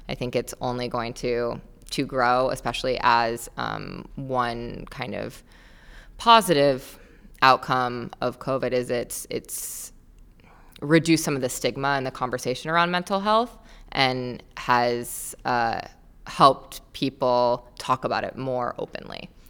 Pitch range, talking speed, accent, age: 125-140 Hz, 130 wpm, American, 20-39